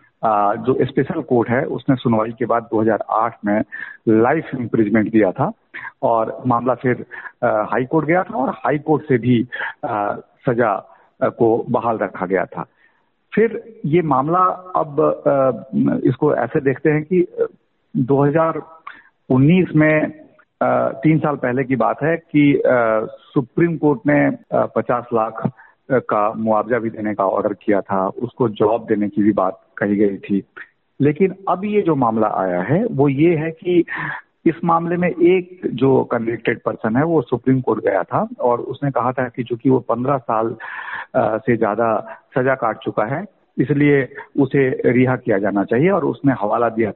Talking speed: 155 wpm